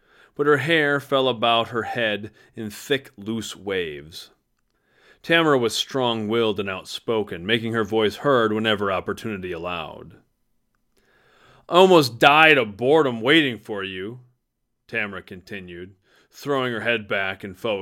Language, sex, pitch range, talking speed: English, male, 100-130 Hz, 130 wpm